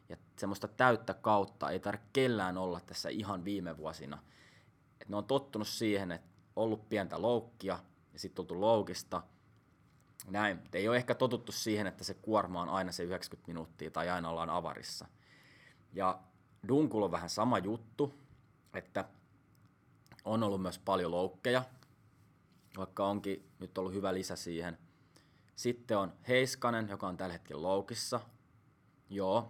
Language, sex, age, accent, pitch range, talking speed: Finnish, male, 20-39, native, 90-115 Hz, 145 wpm